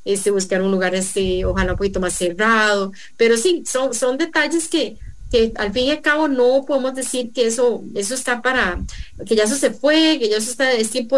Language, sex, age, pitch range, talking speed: English, female, 30-49, 210-270 Hz, 220 wpm